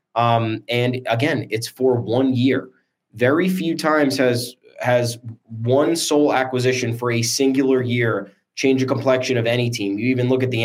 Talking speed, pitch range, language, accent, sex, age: 170 wpm, 115-130 Hz, English, American, male, 20-39